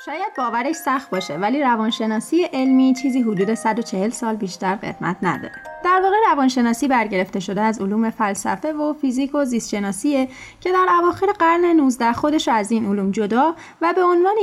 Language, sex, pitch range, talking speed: Persian, female, 220-330 Hz, 160 wpm